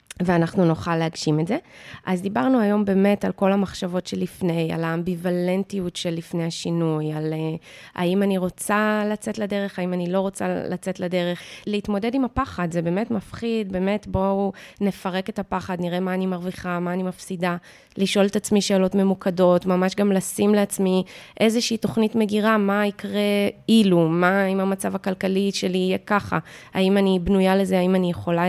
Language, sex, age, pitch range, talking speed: English, female, 20-39, 180-205 Hz, 115 wpm